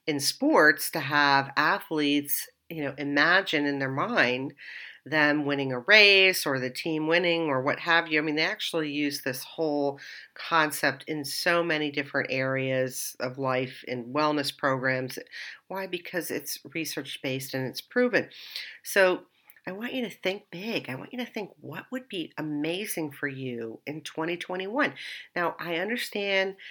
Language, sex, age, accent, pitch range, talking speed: English, female, 50-69, American, 140-185 Hz, 160 wpm